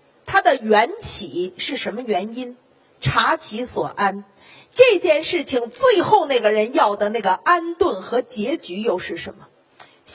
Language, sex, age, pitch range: Chinese, female, 40-59, 240-390 Hz